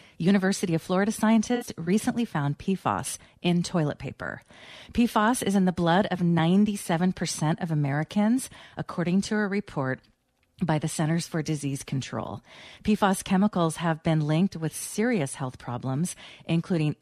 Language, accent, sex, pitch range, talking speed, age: English, American, female, 155-195 Hz, 140 wpm, 40-59